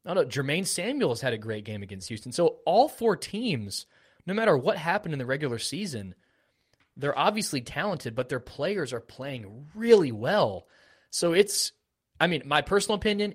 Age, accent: 20-39, American